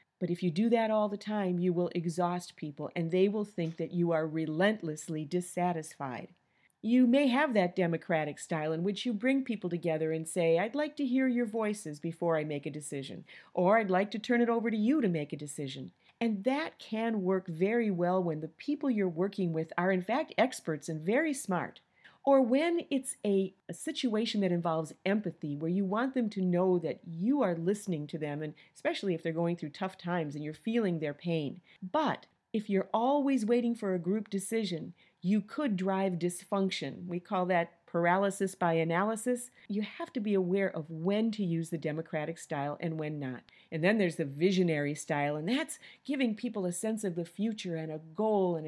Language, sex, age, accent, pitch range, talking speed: English, female, 50-69, American, 165-220 Hz, 205 wpm